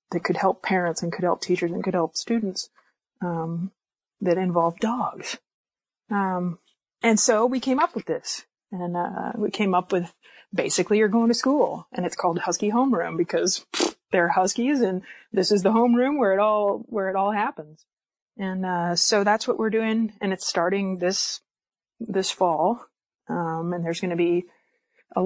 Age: 30-49